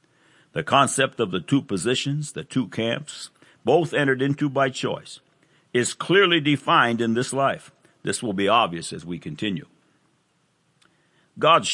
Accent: American